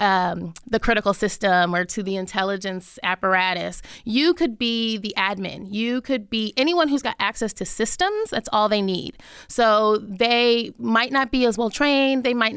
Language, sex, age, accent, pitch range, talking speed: English, female, 20-39, American, 200-240 Hz, 175 wpm